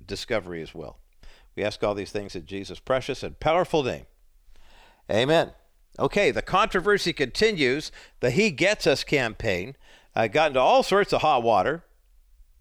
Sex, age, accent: male, 50-69, American